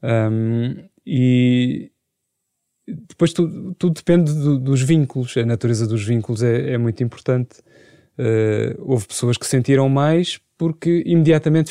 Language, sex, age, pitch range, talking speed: Portuguese, male, 20-39, 120-145 Hz, 130 wpm